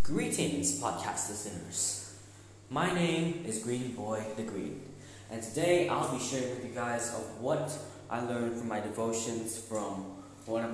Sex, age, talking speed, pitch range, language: male, 20-39, 155 wpm, 105-135 Hz, English